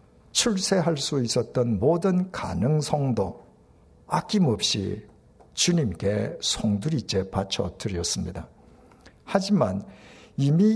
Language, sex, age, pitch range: Korean, male, 60-79, 100-150 Hz